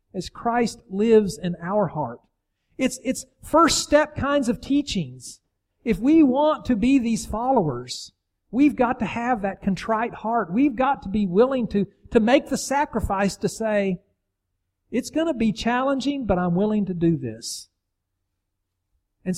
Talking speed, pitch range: 160 wpm, 155-225 Hz